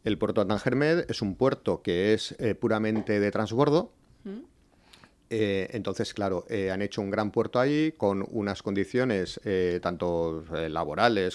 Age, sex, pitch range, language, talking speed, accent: 40-59, male, 95-120 Hz, Spanish, 155 wpm, Spanish